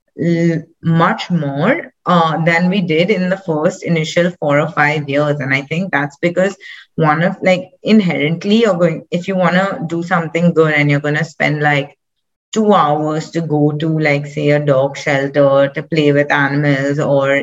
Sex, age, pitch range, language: female, 30-49, 150-175 Hz, English